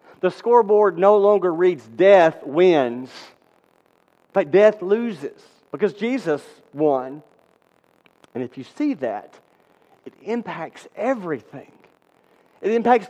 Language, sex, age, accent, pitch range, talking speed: English, male, 40-59, American, 155-205 Hz, 110 wpm